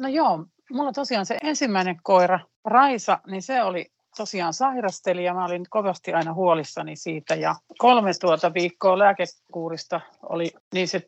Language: Finnish